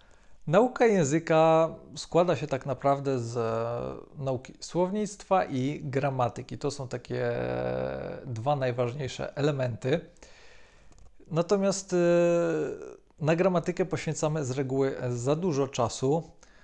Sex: male